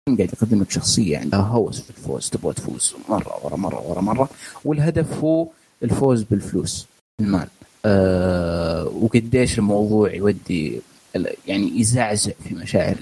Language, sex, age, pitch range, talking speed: Arabic, male, 30-49, 100-130 Hz, 130 wpm